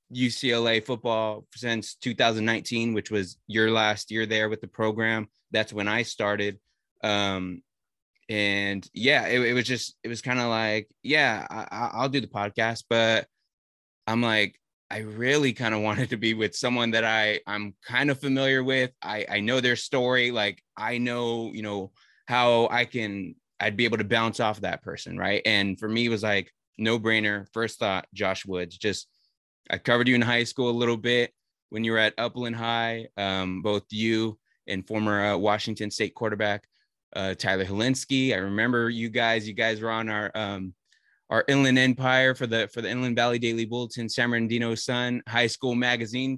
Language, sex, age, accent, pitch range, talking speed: English, male, 20-39, American, 105-120 Hz, 180 wpm